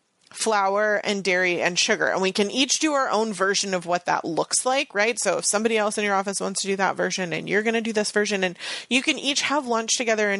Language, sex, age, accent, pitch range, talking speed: English, female, 30-49, American, 175-225 Hz, 265 wpm